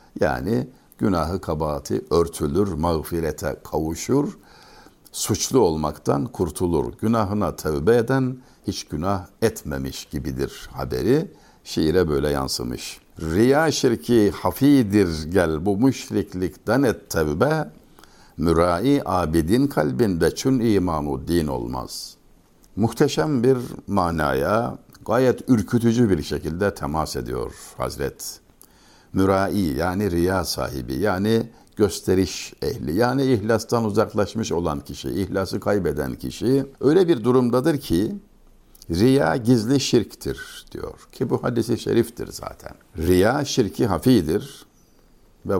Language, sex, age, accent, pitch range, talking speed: Turkish, male, 60-79, native, 80-120 Hz, 100 wpm